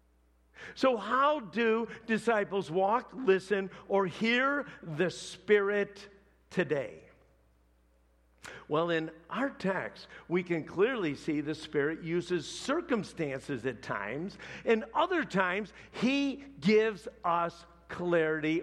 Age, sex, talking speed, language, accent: 50-69, male, 105 wpm, English, American